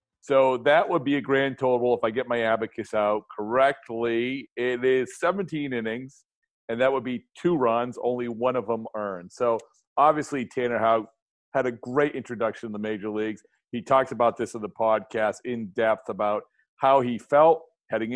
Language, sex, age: English, male, 40-59